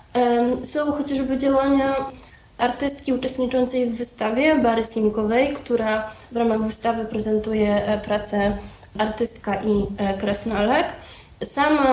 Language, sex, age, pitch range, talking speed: Polish, female, 20-39, 215-255 Hz, 95 wpm